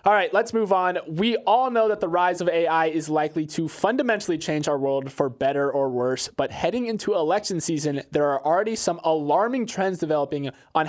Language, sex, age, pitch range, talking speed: English, male, 20-39, 145-185 Hz, 205 wpm